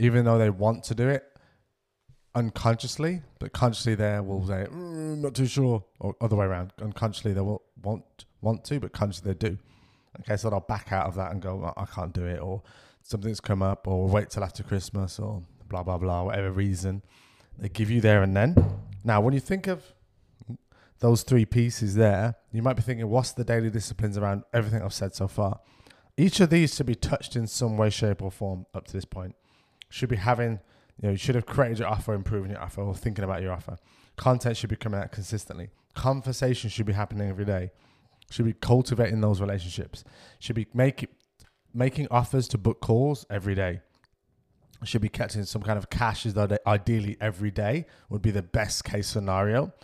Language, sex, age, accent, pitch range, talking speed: English, male, 20-39, British, 100-120 Hz, 200 wpm